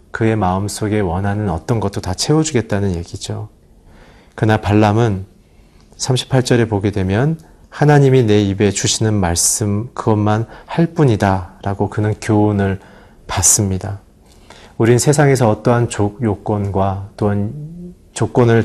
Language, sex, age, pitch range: Korean, male, 30-49, 95-115 Hz